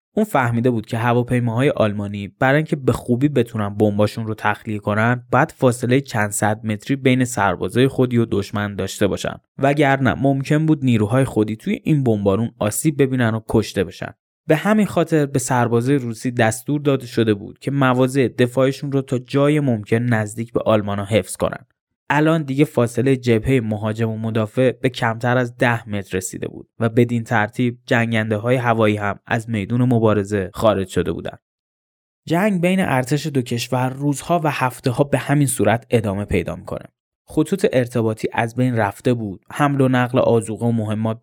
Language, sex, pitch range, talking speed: Persian, male, 110-135 Hz, 170 wpm